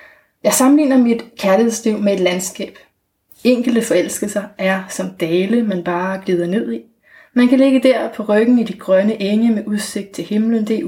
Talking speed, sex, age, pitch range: 180 wpm, female, 30-49, 195-245 Hz